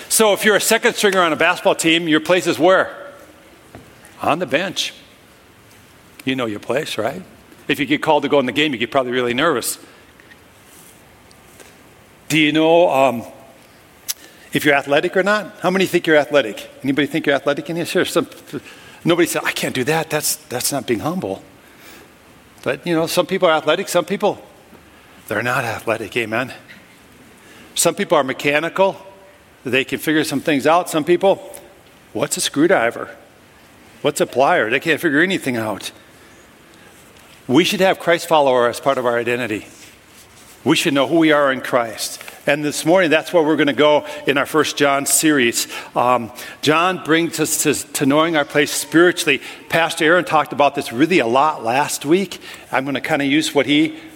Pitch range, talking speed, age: 140-175 Hz, 180 wpm, 50-69